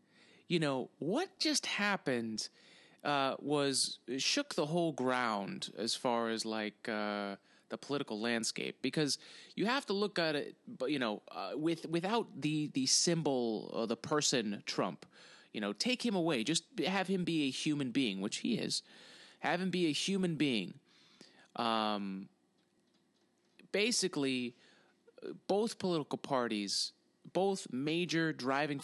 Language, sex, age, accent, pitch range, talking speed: English, male, 30-49, American, 110-165 Hz, 140 wpm